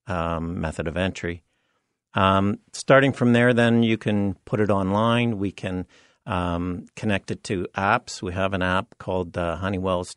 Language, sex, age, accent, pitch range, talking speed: English, male, 50-69, American, 90-110 Hz, 165 wpm